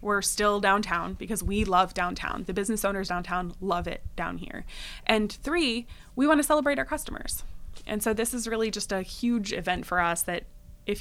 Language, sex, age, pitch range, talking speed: English, female, 20-39, 185-225 Hz, 195 wpm